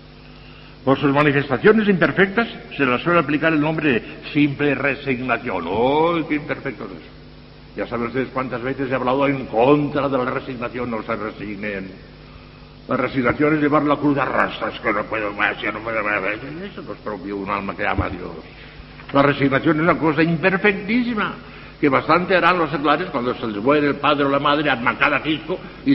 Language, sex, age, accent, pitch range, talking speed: Spanish, male, 60-79, Spanish, 125-165 Hz, 195 wpm